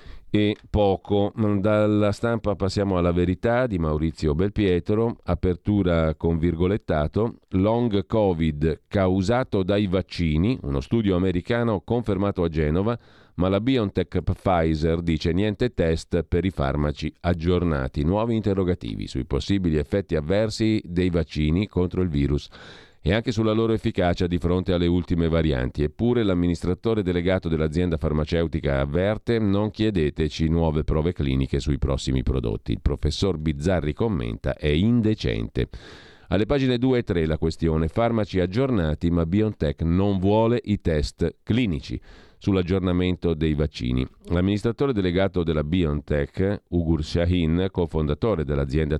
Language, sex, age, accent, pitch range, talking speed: Italian, male, 40-59, native, 80-105 Hz, 125 wpm